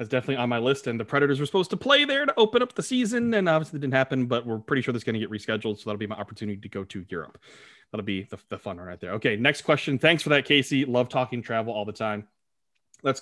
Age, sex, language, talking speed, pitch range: 30-49, male, English, 280 wpm, 110-135 Hz